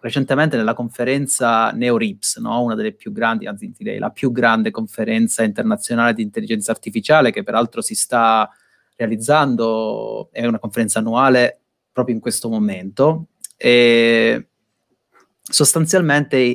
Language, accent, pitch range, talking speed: Italian, native, 115-155 Hz, 125 wpm